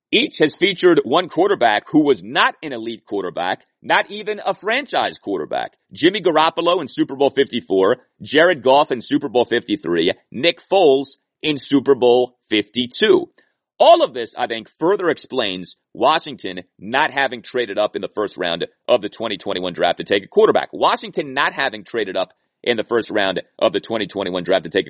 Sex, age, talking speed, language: male, 30-49, 175 wpm, English